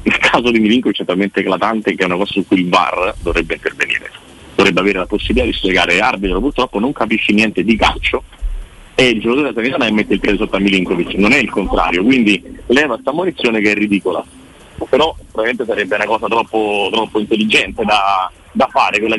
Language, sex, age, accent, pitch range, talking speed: Italian, male, 40-59, native, 125-195 Hz, 200 wpm